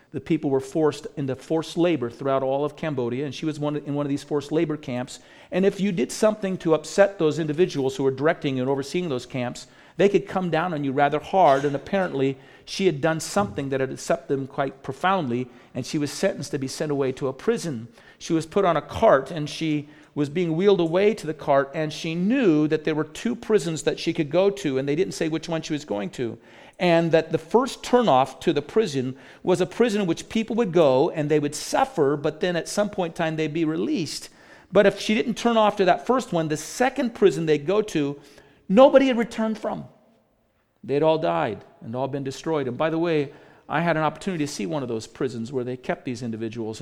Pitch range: 140-185 Hz